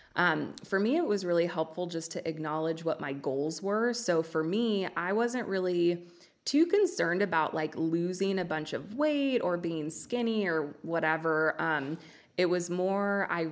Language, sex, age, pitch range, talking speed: English, female, 20-39, 155-175 Hz, 175 wpm